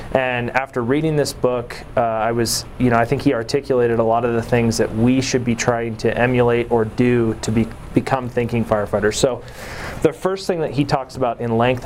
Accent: American